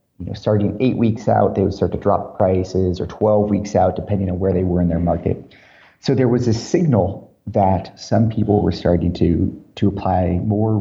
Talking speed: 210 wpm